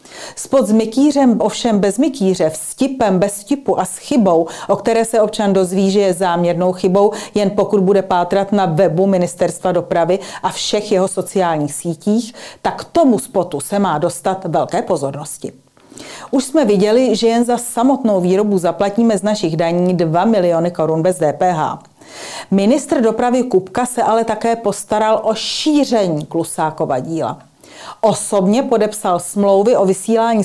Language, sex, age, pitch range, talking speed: Czech, female, 40-59, 185-225 Hz, 150 wpm